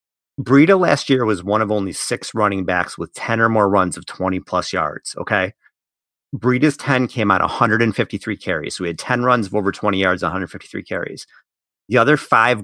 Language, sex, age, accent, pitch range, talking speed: English, male, 40-59, American, 95-120 Hz, 180 wpm